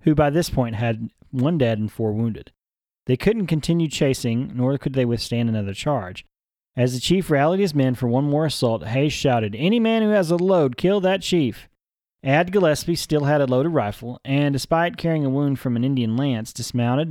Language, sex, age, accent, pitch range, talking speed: English, male, 30-49, American, 120-160 Hz, 205 wpm